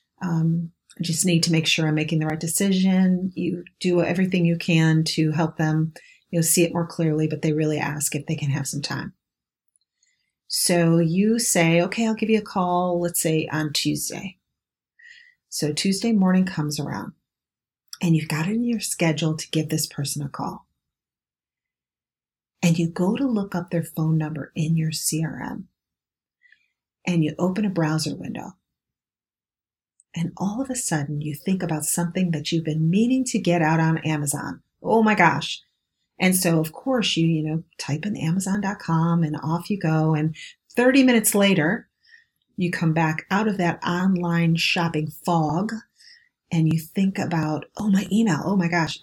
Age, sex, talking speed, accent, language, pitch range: 40-59, female, 175 wpm, American, English, 155-190 Hz